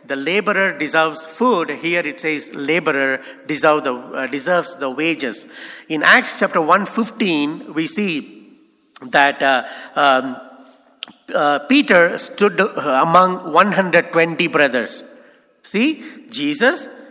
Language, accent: English, Indian